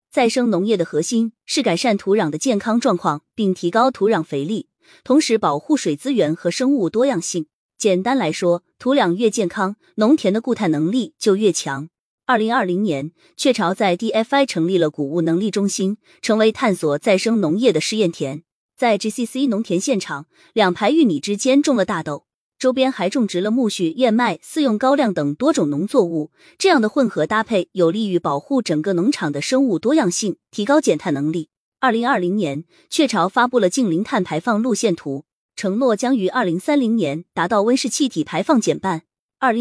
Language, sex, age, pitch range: Chinese, female, 20-39, 175-250 Hz